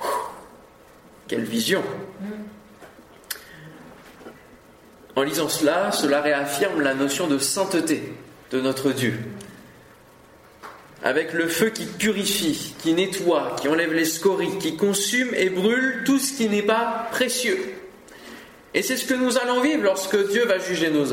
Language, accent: French, French